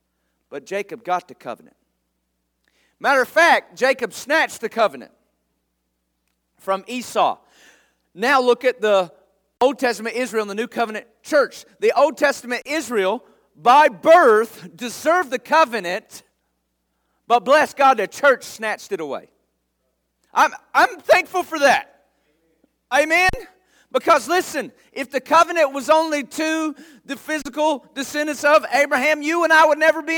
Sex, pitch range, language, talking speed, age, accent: male, 215-305 Hz, English, 135 wpm, 40-59, American